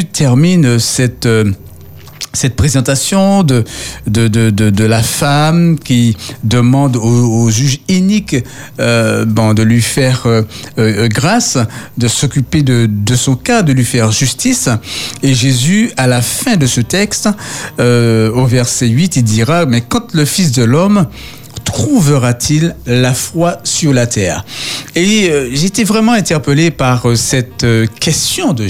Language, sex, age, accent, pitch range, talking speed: French, male, 50-69, French, 120-165 Hz, 145 wpm